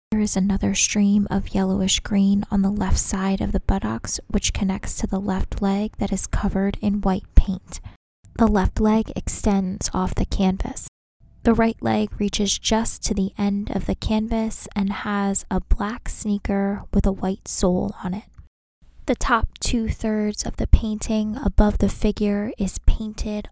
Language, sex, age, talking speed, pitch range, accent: English, female, 20-39, 170 wpm, 190-210 Hz, American